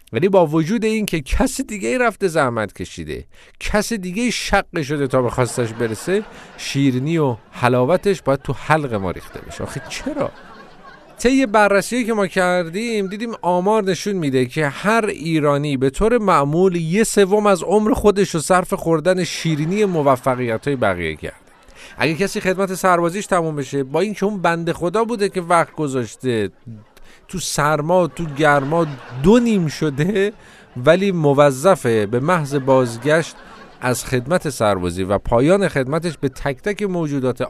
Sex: male